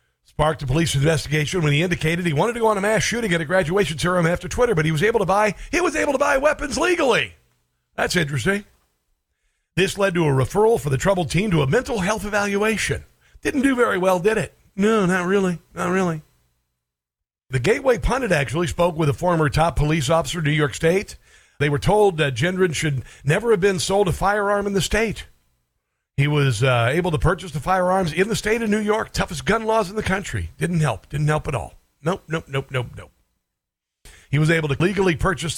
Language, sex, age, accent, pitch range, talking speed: English, male, 50-69, American, 135-185 Hz, 215 wpm